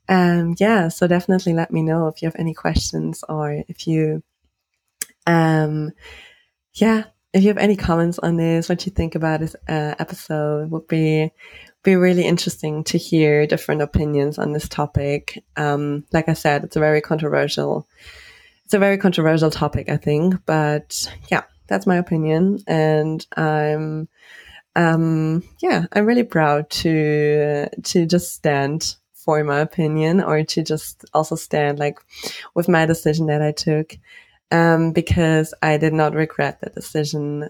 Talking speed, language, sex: 155 wpm, English, female